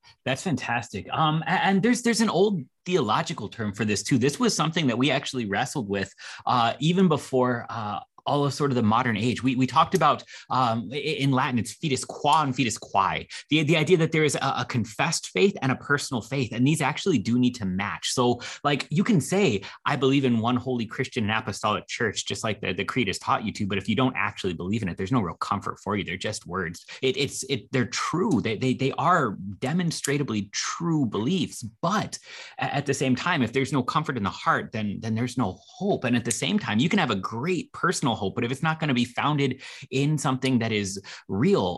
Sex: male